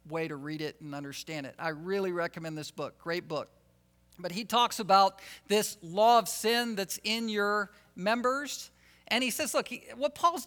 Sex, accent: male, American